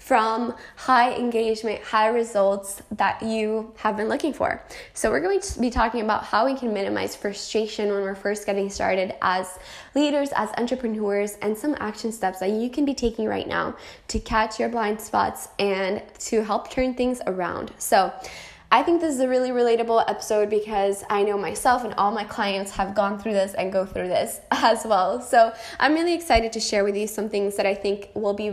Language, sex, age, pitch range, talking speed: English, female, 10-29, 200-250 Hz, 200 wpm